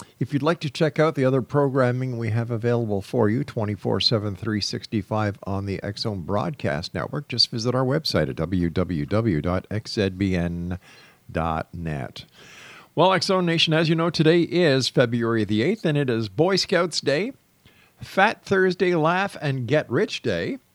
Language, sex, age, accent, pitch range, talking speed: English, male, 50-69, American, 105-145 Hz, 145 wpm